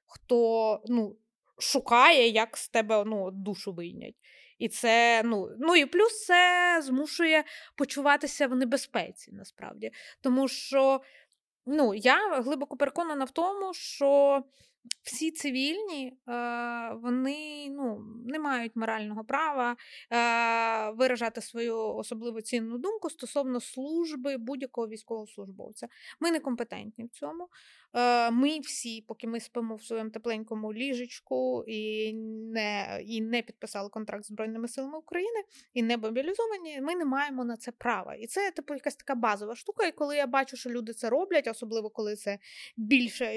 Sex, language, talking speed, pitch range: female, Ukrainian, 135 wpm, 225-290 Hz